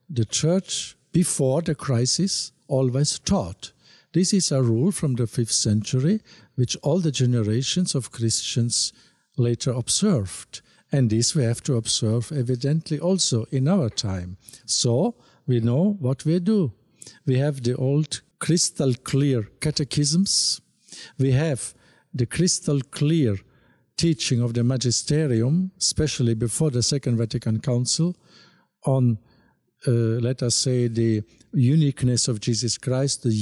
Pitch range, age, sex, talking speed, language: 120-155 Hz, 50-69, male, 130 wpm, English